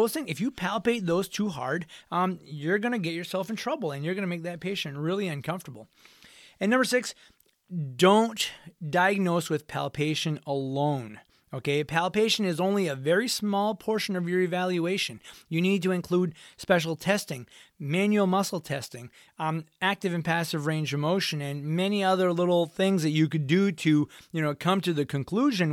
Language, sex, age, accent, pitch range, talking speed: English, male, 30-49, American, 145-185 Hz, 175 wpm